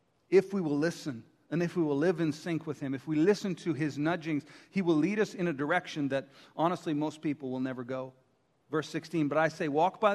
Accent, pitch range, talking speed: American, 145-195 Hz, 235 wpm